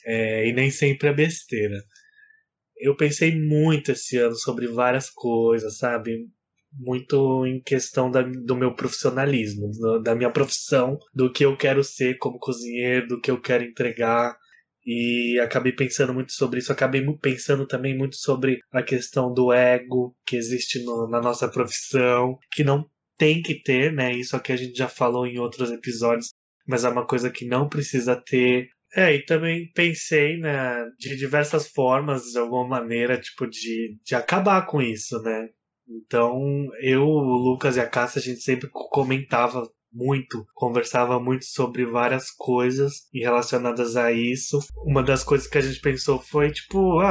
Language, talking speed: Portuguese, 165 wpm